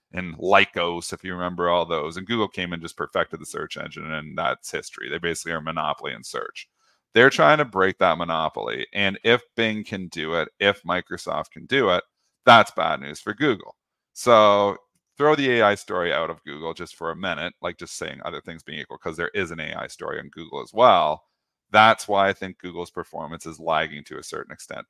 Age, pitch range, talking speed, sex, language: 40-59, 85-100 Hz, 215 wpm, male, English